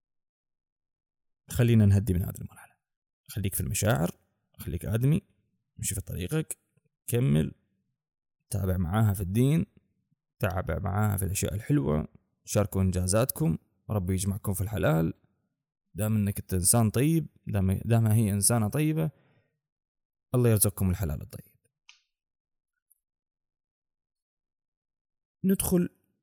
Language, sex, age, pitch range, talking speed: Arabic, male, 20-39, 100-150 Hz, 95 wpm